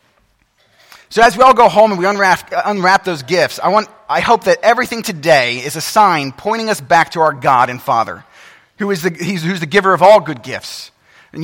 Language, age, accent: English, 30-49, American